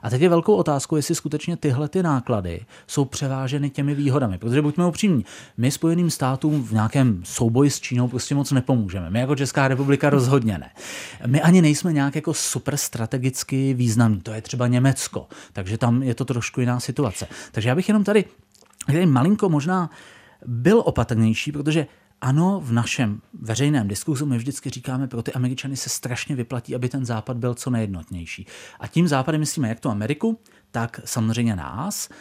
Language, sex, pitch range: Czech, male, 115-145 Hz